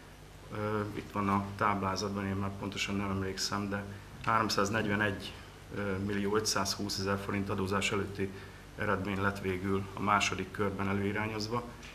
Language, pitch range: Hungarian, 95-105 Hz